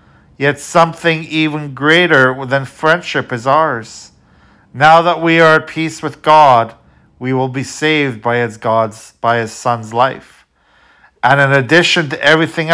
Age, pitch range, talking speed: 50-69, 120-155 Hz, 140 wpm